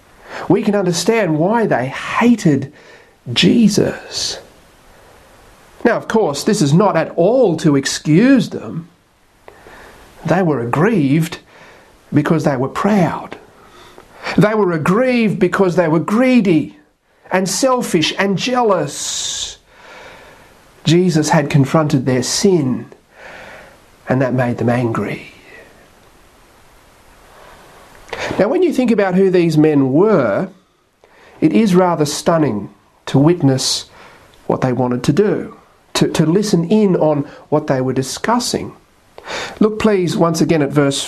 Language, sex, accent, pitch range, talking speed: English, male, Australian, 150-210 Hz, 120 wpm